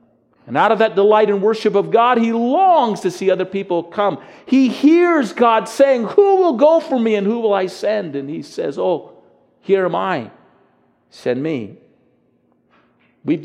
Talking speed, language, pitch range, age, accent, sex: 180 wpm, English, 145-220 Hz, 50-69, American, male